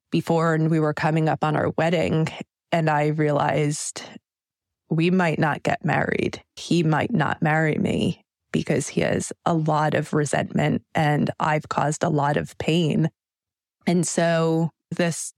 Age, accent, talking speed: 20-39, American, 150 wpm